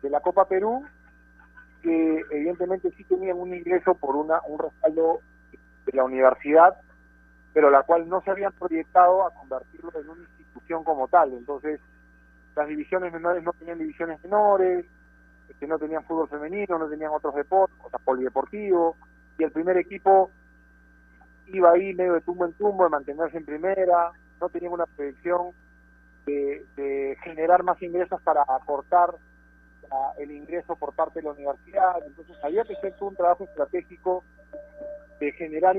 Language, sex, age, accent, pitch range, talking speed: Spanish, male, 40-59, Argentinian, 140-180 Hz, 160 wpm